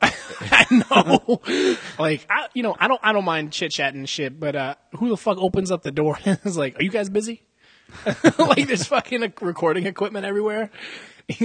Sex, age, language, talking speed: male, 20-39, English, 195 wpm